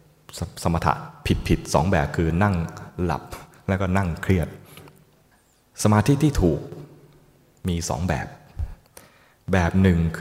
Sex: male